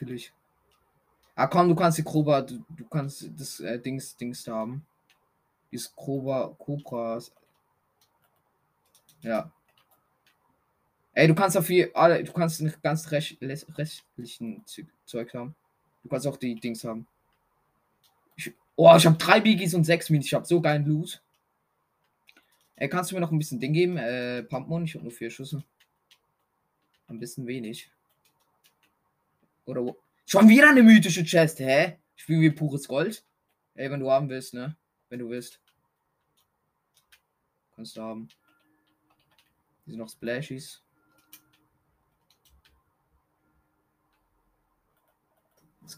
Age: 20-39